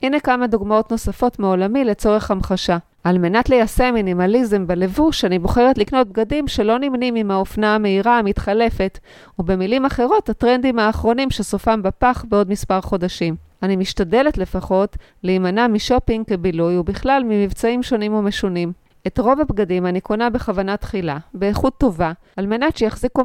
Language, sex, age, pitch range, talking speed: Hebrew, female, 30-49, 195-245 Hz, 135 wpm